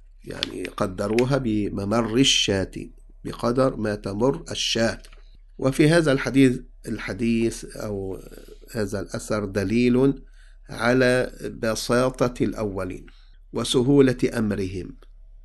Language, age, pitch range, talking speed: English, 50-69, 105-135 Hz, 80 wpm